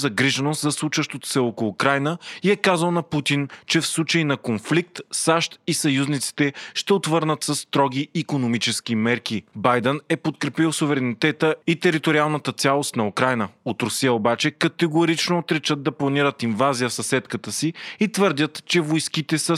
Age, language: 30-49, Bulgarian